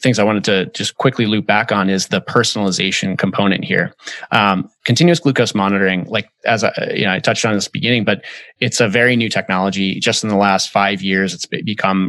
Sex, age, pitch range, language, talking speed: male, 20-39, 100-120 Hz, English, 215 wpm